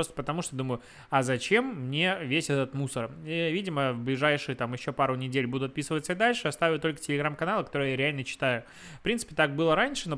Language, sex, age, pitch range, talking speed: Russian, male, 20-39, 130-165 Hz, 205 wpm